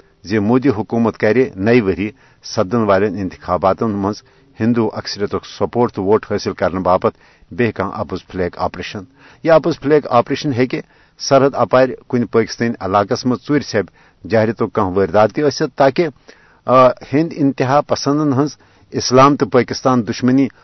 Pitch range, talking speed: 100-130 Hz, 150 wpm